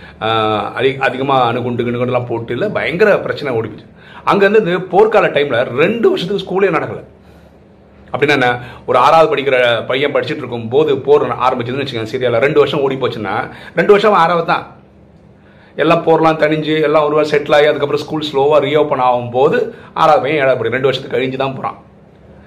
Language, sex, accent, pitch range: Tamil, male, native, 125-165 Hz